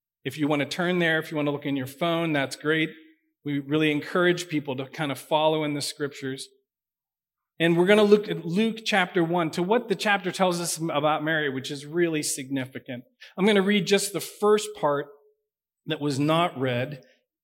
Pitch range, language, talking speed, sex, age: 135-180 Hz, English, 205 wpm, male, 40-59